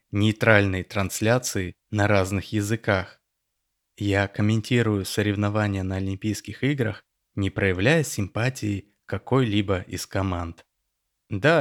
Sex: male